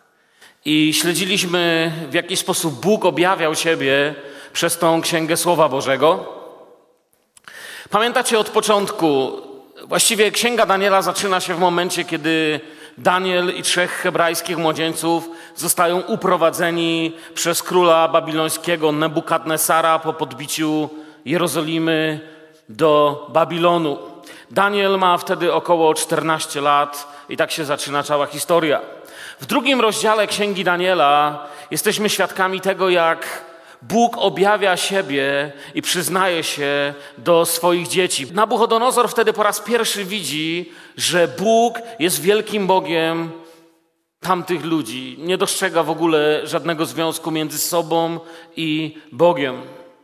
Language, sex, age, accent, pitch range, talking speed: Polish, male, 40-59, native, 160-190 Hz, 110 wpm